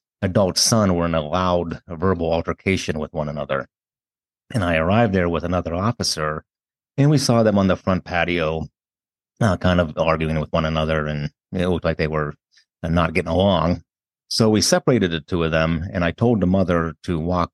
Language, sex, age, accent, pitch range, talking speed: English, male, 50-69, American, 80-95 Hz, 190 wpm